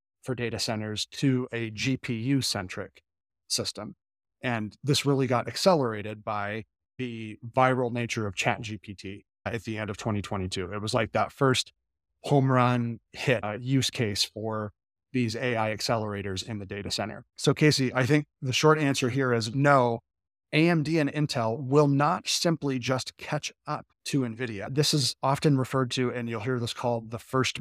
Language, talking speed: English, 165 wpm